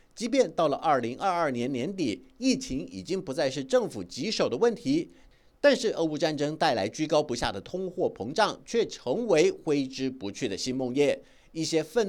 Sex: male